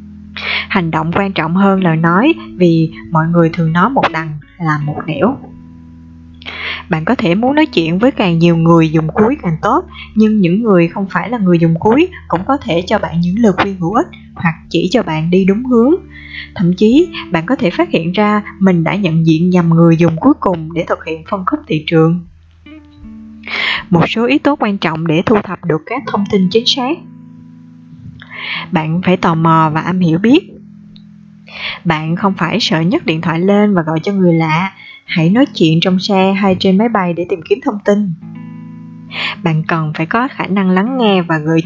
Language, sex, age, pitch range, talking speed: Vietnamese, female, 20-39, 160-205 Hz, 205 wpm